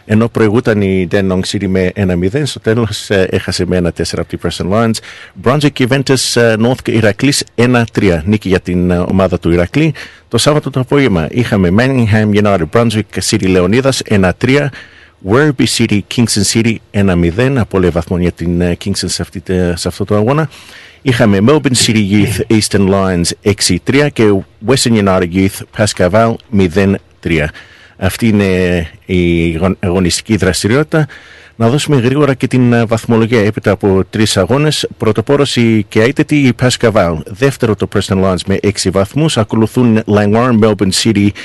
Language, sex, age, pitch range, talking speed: Greek, male, 50-69, 95-120 Hz, 155 wpm